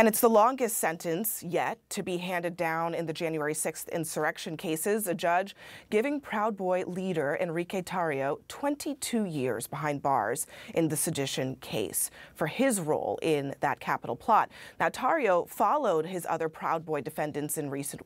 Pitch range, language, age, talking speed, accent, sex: 155-205 Hz, English, 30-49, 165 wpm, American, female